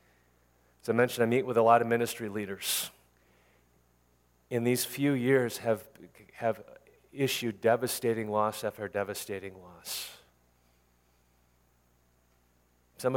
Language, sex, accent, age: English, male, American, 40-59